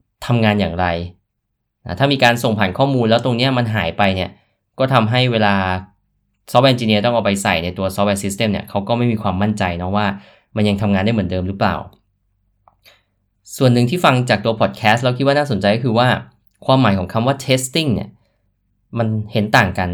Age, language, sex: 20-39, Thai, male